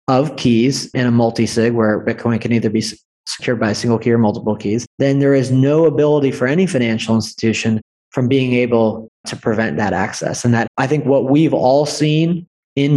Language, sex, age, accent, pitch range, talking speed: English, male, 30-49, American, 115-140 Hz, 200 wpm